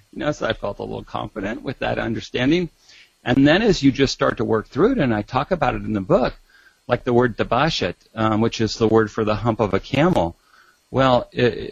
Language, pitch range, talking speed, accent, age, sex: English, 100-130 Hz, 235 wpm, American, 40-59, male